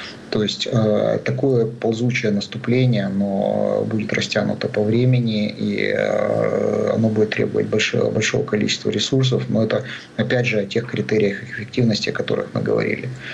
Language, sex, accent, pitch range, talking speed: Russian, male, native, 105-120 Hz, 130 wpm